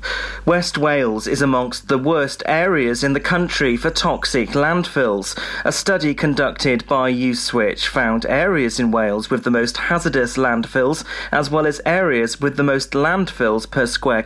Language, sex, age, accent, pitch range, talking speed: English, male, 30-49, British, 125-160 Hz, 155 wpm